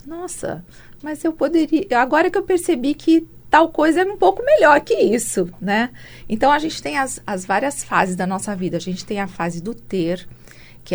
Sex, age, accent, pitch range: female, 40-59, Brazilian, 185-260 Hz